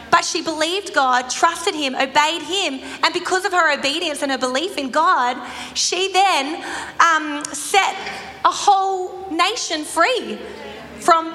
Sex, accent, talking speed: female, Australian, 145 wpm